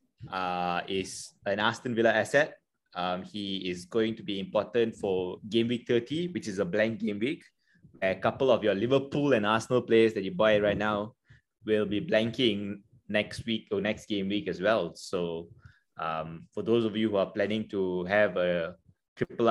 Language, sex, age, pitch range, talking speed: English, male, 20-39, 95-115 Hz, 185 wpm